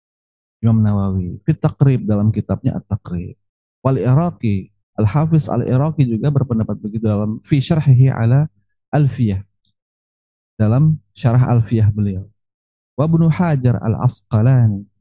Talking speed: 110 wpm